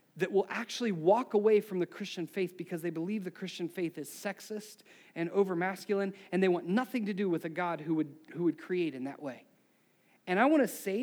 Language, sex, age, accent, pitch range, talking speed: English, male, 40-59, American, 205-290 Hz, 225 wpm